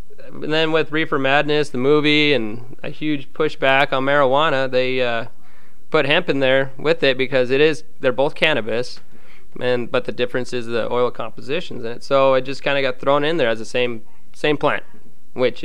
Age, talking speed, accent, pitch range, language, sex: 20-39, 200 wpm, American, 125-155 Hz, English, male